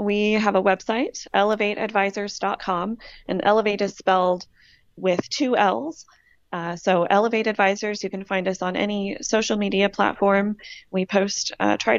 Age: 20-39